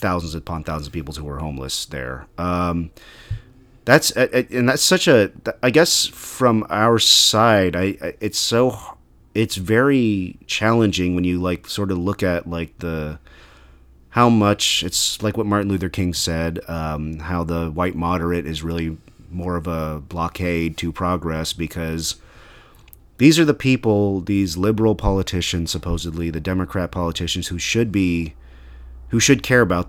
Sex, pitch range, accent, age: male, 80-100 Hz, American, 30-49